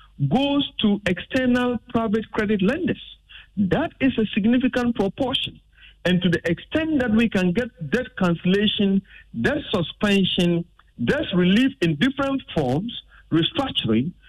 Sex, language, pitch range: male, English, 170-245 Hz